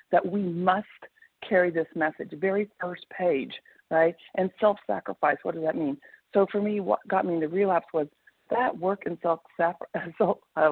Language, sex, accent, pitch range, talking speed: English, female, American, 165-220 Hz, 160 wpm